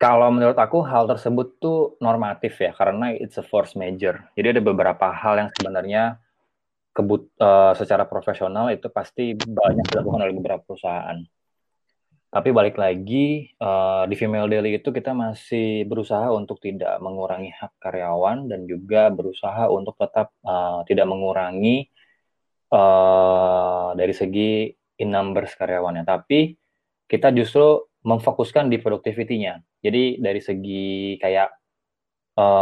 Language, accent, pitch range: Indonesian, native, 95-120 Hz